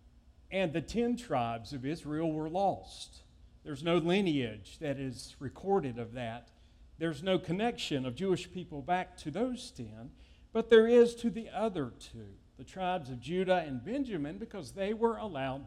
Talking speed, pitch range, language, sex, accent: 165 wpm, 120-200 Hz, English, male, American